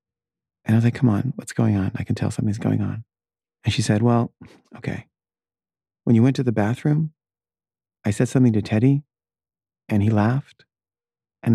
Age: 30-49